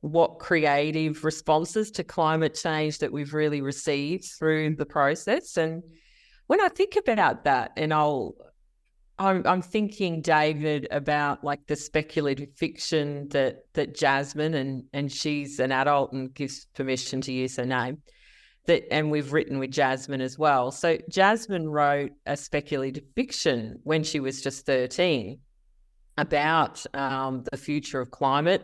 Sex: female